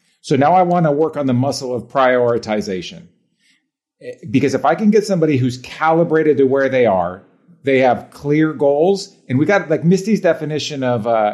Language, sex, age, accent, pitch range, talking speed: English, male, 40-59, American, 130-170 Hz, 185 wpm